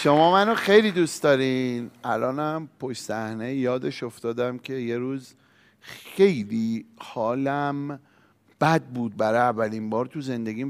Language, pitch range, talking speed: Persian, 130-190 Hz, 125 wpm